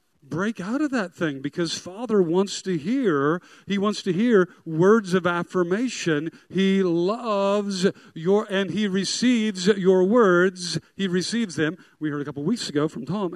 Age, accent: 50-69, American